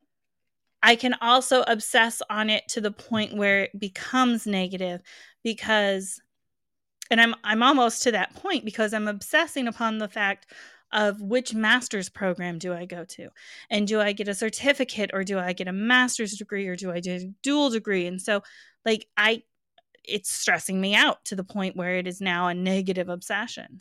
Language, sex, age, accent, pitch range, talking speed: English, female, 20-39, American, 190-230 Hz, 185 wpm